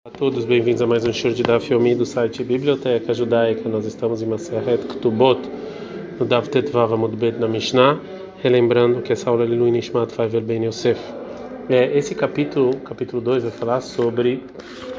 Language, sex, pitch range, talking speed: Portuguese, male, 115-135 Hz, 170 wpm